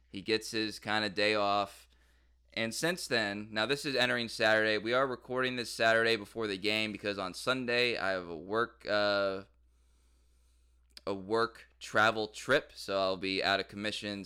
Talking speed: 175 wpm